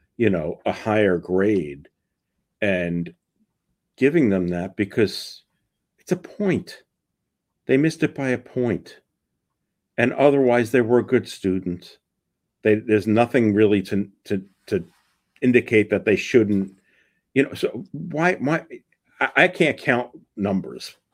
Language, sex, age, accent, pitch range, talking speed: English, male, 50-69, American, 95-115 Hz, 135 wpm